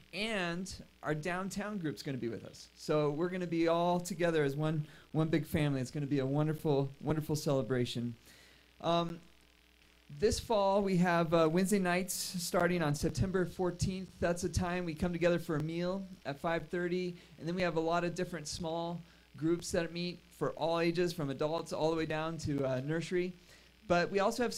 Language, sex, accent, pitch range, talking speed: English, male, American, 150-180 Hz, 200 wpm